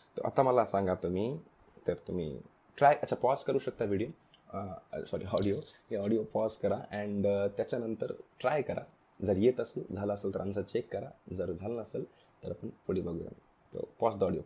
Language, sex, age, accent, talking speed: Hindi, male, 20-39, native, 100 wpm